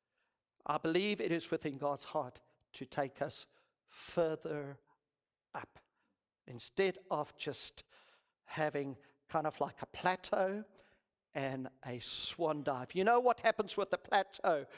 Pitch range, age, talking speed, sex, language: 140-180 Hz, 50-69, 130 wpm, male, English